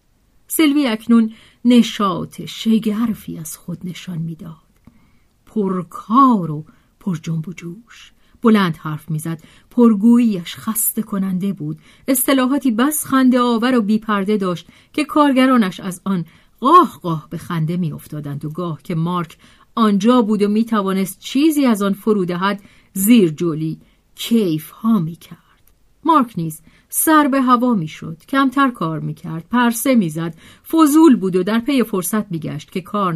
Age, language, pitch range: 40-59, Persian, 170-235 Hz